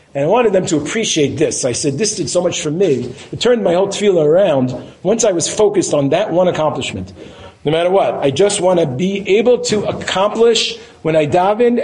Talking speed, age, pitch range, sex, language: 220 wpm, 40-59, 135-180 Hz, male, English